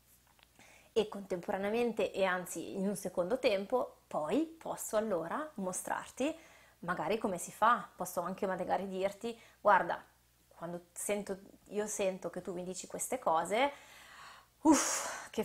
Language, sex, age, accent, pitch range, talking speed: Italian, female, 20-39, native, 180-235 Hz, 130 wpm